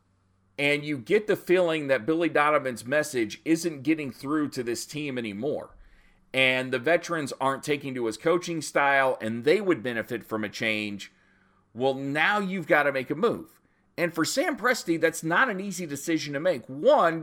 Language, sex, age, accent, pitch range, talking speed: English, male, 40-59, American, 115-165 Hz, 180 wpm